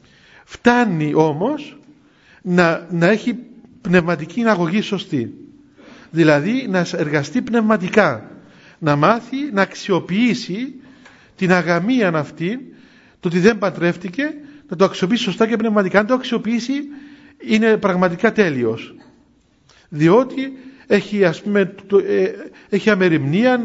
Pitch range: 180-250 Hz